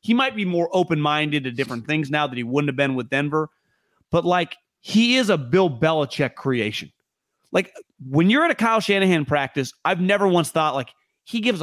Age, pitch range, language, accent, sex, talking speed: 30-49, 140-200 Hz, English, American, male, 200 wpm